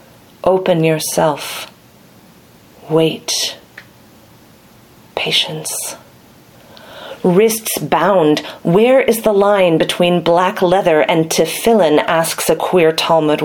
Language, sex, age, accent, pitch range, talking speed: English, female, 40-59, American, 160-195 Hz, 85 wpm